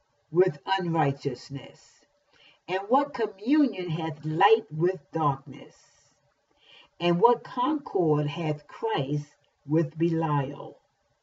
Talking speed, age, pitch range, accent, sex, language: 85 wpm, 50-69, 145-190 Hz, American, female, English